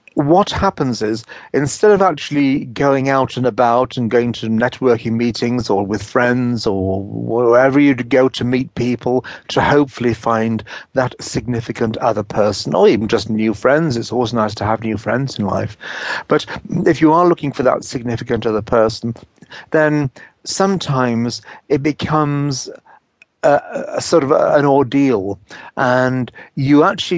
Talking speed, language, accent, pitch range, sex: 155 wpm, English, British, 120-155 Hz, male